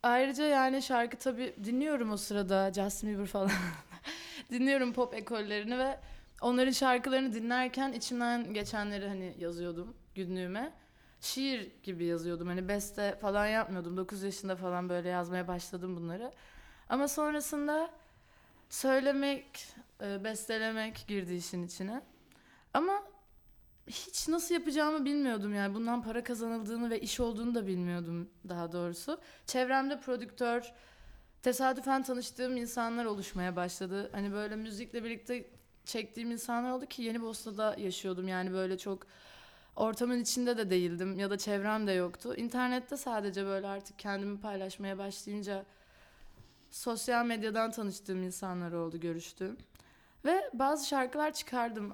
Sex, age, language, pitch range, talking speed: female, 20-39, Turkish, 195-255 Hz, 120 wpm